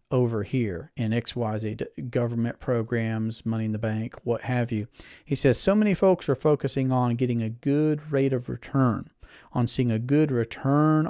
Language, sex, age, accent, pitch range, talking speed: English, male, 40-59, American, 120-150 Hz, 185 wpm